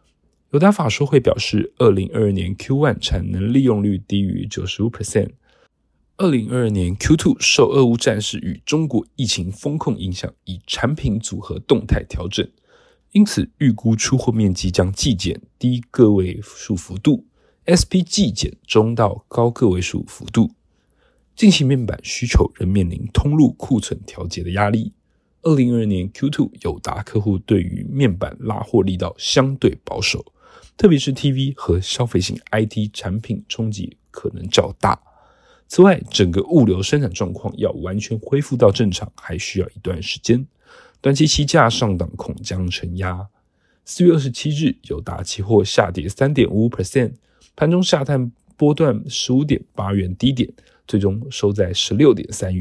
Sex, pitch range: male, 95-135 Hz